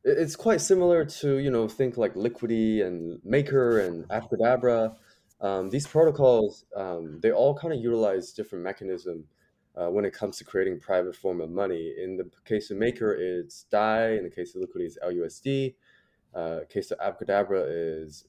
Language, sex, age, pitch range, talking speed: English, male, 20-39, 85-125 Hz, 180 wpm